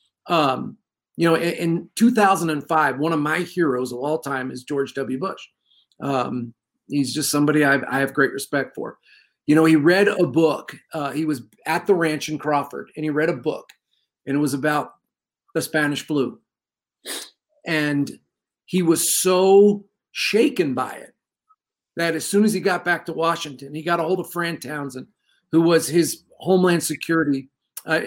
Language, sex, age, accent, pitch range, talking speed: English, male, 40-59, American, 150-180 Hz, 170 wpm